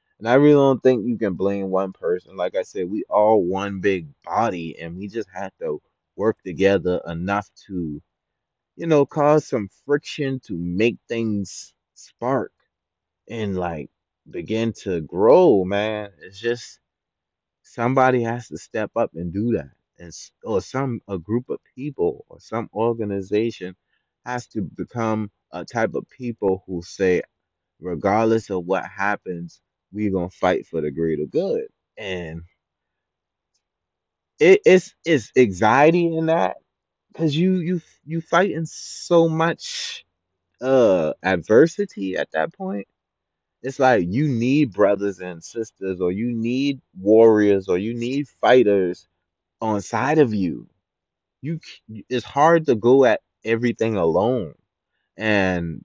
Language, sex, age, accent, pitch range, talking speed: English, male, 20-39, American, 90-130 Hz, 140 wpm